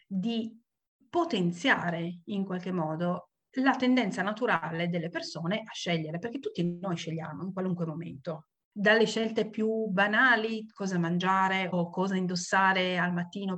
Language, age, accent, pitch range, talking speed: Italian, 40-59, native, 165-220 Hz, 135 wpm